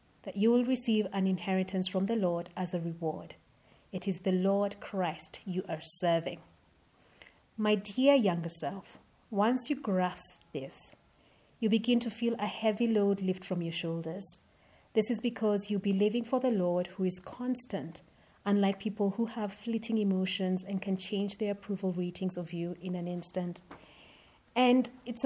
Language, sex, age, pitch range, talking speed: English, female, 30-49, 180-220 Hz, 165 wpm